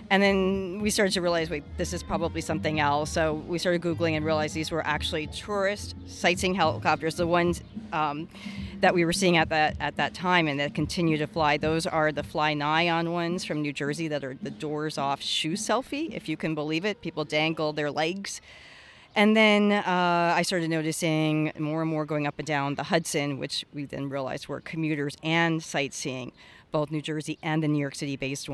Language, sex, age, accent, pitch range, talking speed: English, female, 40-59, American, 145-165 Hz, 200 wpm